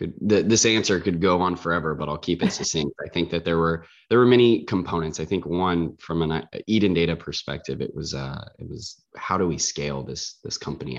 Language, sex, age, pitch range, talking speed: English, male, 20-39, 75-90 Hz, 230 wpm